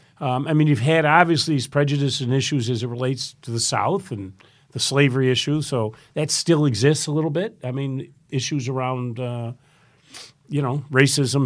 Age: 50-69